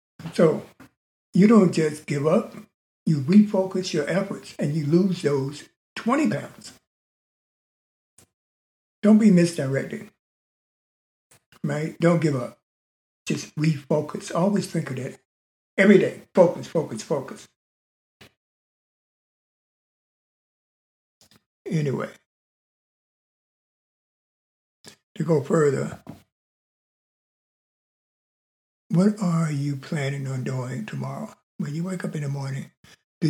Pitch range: 125-175 Hz